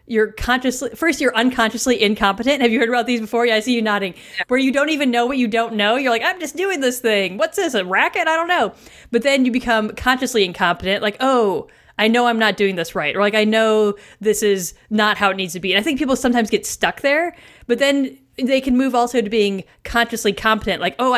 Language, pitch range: English, 195-250 Hz